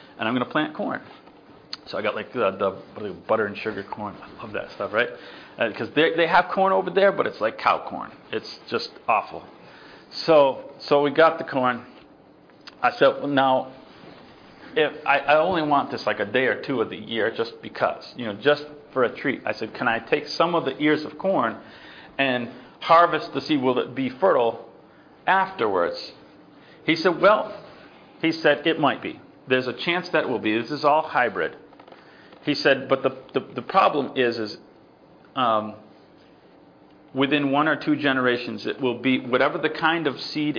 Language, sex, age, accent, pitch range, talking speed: English, male, 40-59, American, 125-155 Hz, 195 wpm